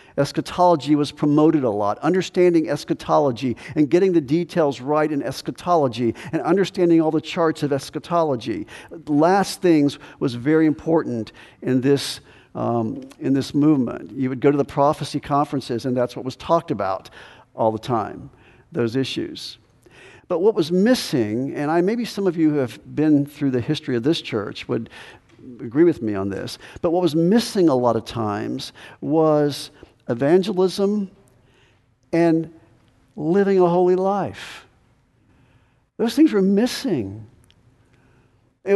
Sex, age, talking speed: male, 50-69, 145 wpm